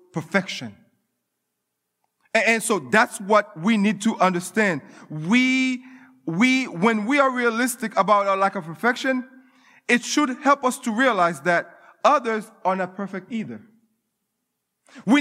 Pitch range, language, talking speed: 195-245 Hz, English, 130 wpm